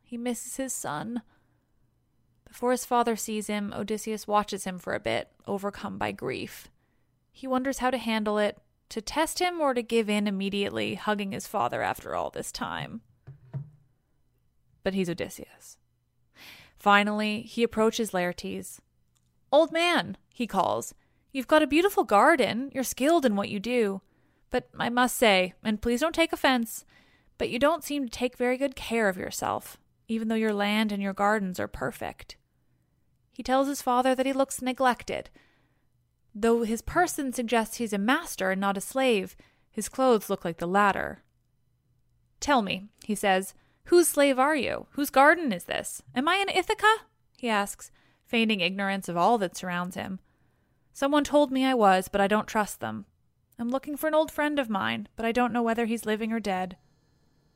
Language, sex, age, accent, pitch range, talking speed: English, female, 20-39, American, 195-260 Hz, 175 wpm